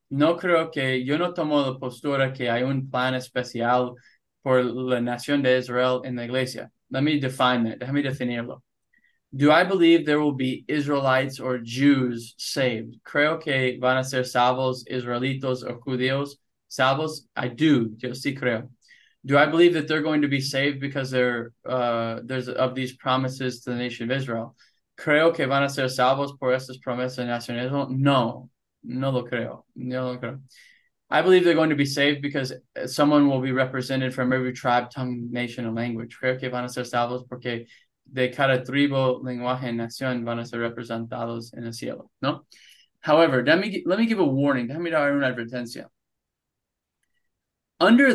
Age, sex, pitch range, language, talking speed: 20-39, male, 125-140 Hz, English, 180 wpm